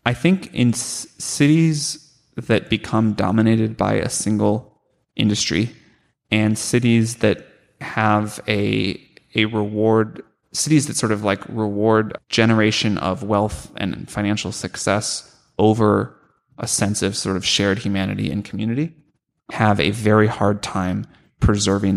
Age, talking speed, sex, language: 20-39, 130 wpm, male, English